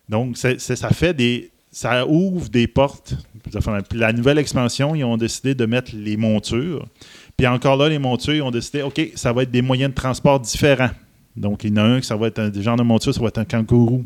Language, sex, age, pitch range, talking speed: French, male, 30-49, 110-135 Hz, 230 wpm